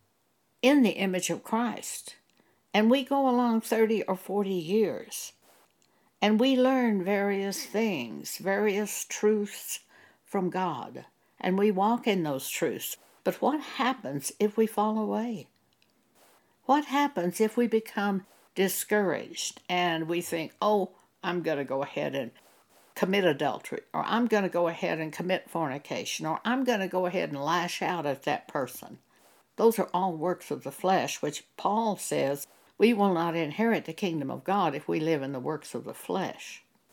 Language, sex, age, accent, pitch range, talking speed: English, female, 60-79, American, 170-225 Hz, 165 wpm